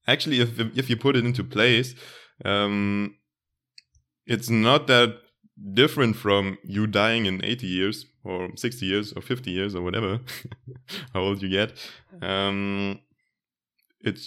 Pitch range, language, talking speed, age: 95-120 Hz, English, 140 wpm, 20-39